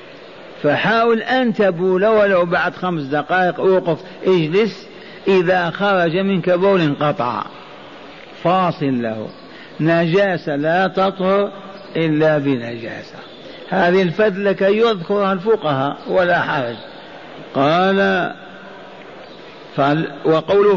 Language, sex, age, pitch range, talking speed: Arabic, male, 50-69, 170-195 Hz, 90 wpm